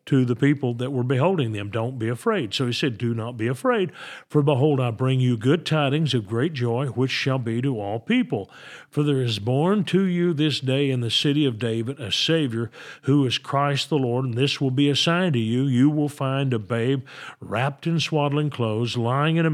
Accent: American